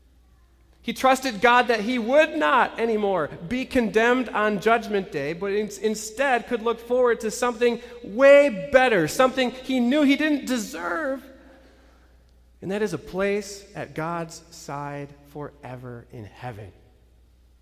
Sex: male